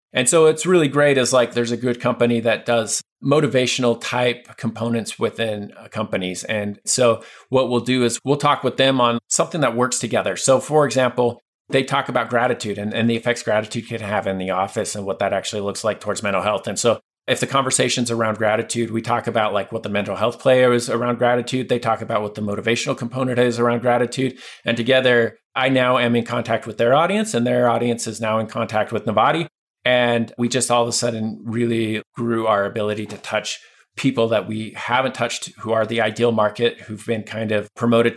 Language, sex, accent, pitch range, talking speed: English, male, American, 110-125 Hz, 210 wpm